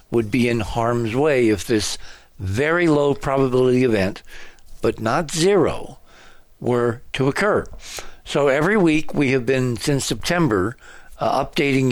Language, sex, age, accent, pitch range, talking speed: English, male, 60-79, American, 110-135 Hz, 135 wpm